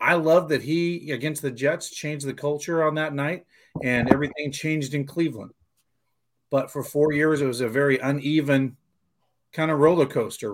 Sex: male